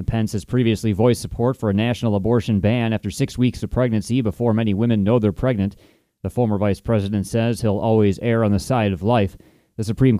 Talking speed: 210 wpm